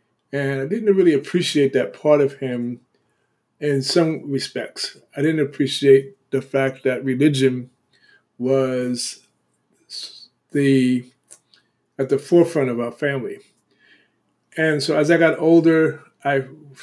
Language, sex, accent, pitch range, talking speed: English, male, American, 125-150 Hz, 120 wpm